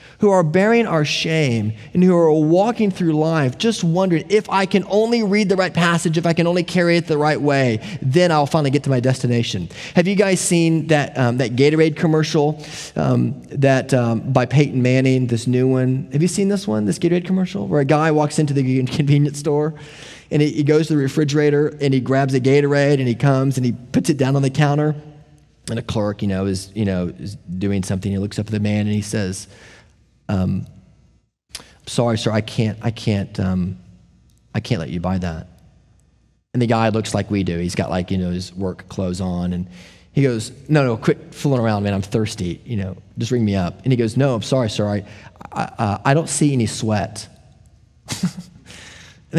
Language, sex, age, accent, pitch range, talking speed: English, male, 30-49, American, 105-155 Hz, 215 wpm